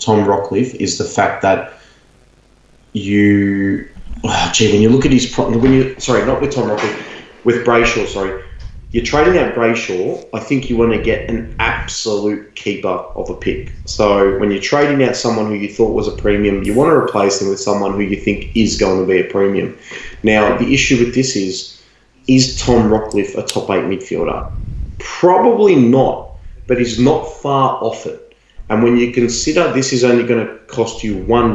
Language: English